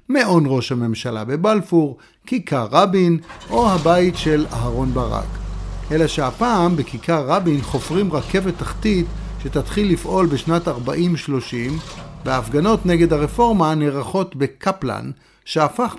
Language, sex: Hebrew, male